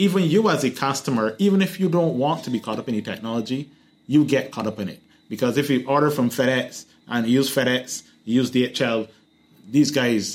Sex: male